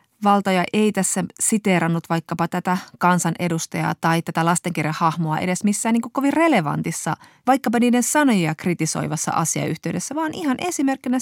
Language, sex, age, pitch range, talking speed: Finnish, female, 30-49, 165-225 Hz, 135 wpm